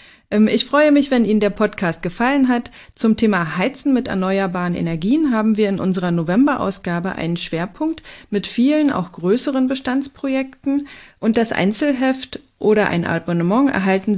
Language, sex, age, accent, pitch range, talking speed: German, female, 40-59, German, 180-235 Hz, 145 wpm